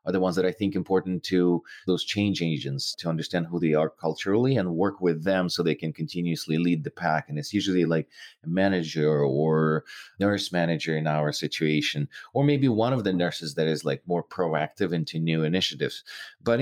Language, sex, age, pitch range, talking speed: English, male, 30-49, 85-110 Hz, 200 wpm